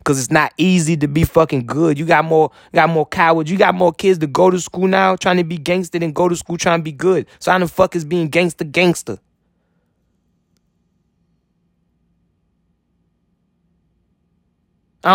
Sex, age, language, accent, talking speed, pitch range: male, 20-39, English, American, 180 wpm, 145-190 Hz